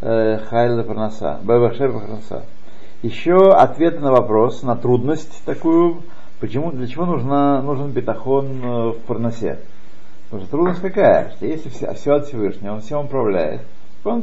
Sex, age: male, 60-79